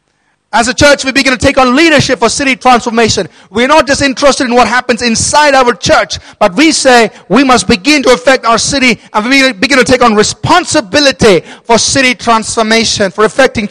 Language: English